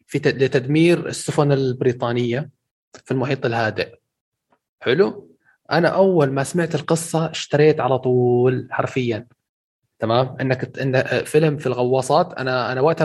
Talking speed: 115 wpm